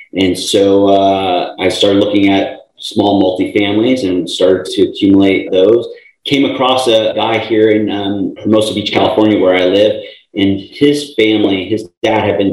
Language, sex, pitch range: English, male, 95-110 Hz